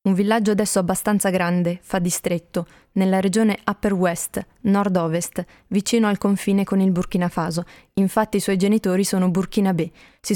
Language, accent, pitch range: Italian, native, 180-205 Hz